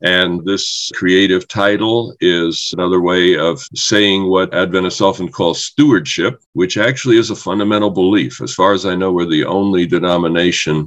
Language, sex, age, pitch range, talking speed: English, male, 50-69, 85-105 Hz, 160 wpm